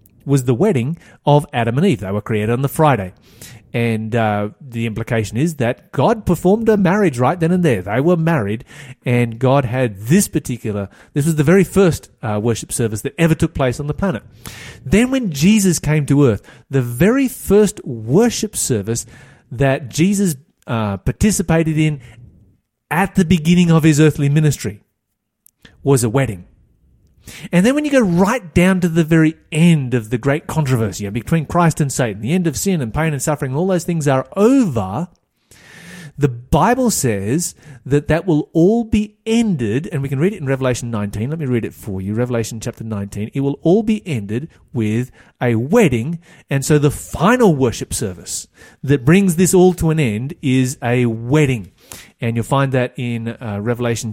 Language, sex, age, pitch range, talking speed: English, male, 30-49, 115-170 Hz, 185 wpm